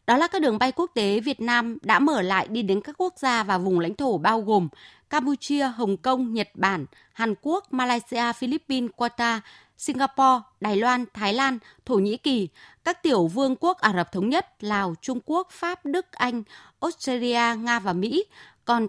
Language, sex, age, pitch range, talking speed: Vietnamese, female, 20-39, 210-275 Hz, 190 wpm